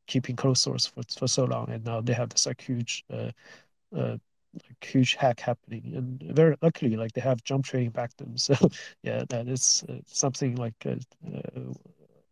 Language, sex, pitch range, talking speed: English, male, 125-145 Hz, 185 wpm